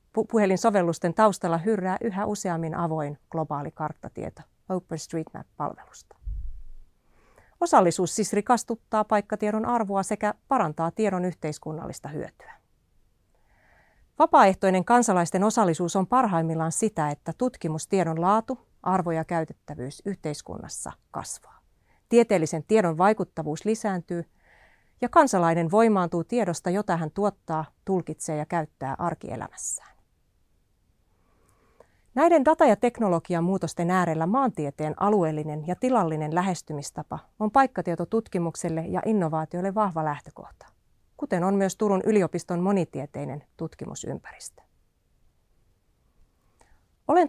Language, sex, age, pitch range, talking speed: Finnish, female, 40-59, 165-215 Hz, 95 wpm